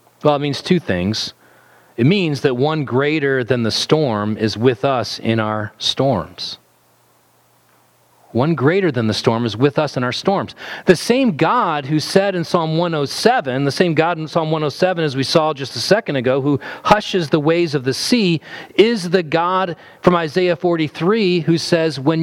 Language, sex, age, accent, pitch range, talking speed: English, male, 40-59, American, 125-170 Hz, 180 wpm